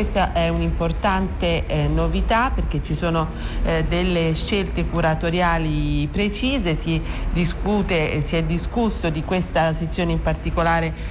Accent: native